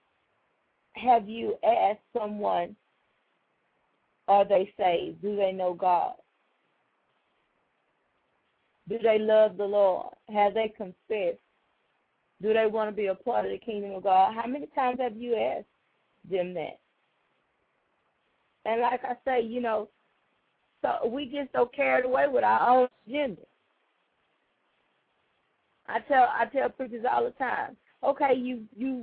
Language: English